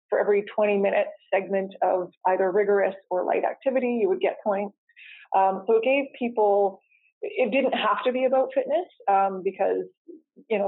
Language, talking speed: English, 175 wpm